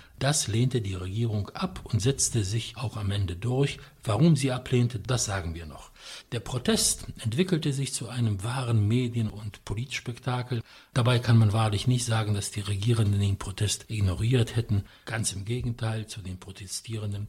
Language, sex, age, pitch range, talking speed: English, male, 60-79, 100-125 Hz, 165 wpm